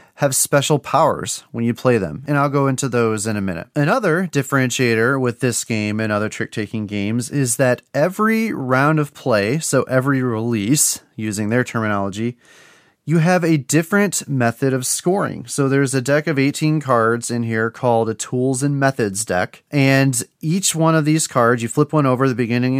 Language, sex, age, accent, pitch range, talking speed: English, male, 30-49, American, 120-145 Hz, 185 wpm